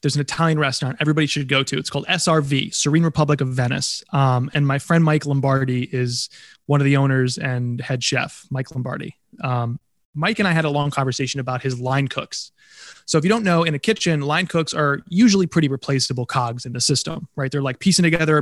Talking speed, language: 215 wpm, English